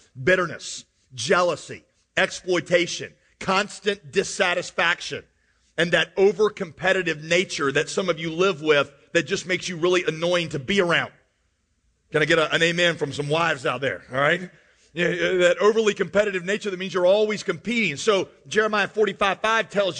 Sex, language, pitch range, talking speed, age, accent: male, English, 170-225 Hz, 155 wpm, 40-59, American